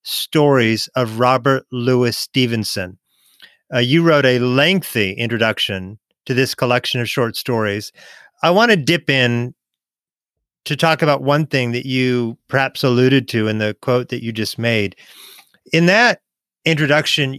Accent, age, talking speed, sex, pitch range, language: American, 40-59, 145 wpm, male, 125-160 Hz, English